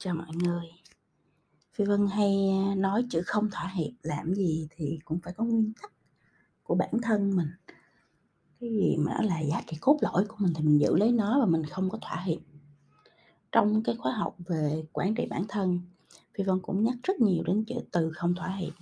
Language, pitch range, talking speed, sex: Vietnamese, 160-210 Hz, 205 wpm, female